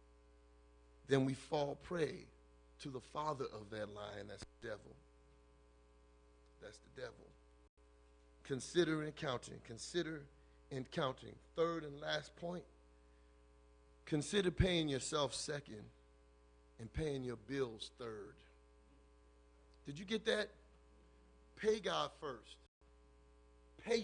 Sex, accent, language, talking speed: male, American, English, 105 wpm